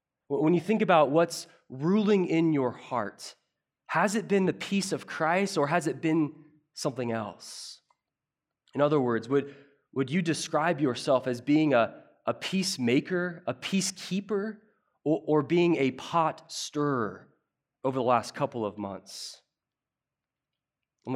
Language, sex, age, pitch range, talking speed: English, male, 20-39, 125-155 Hz, 140 wpm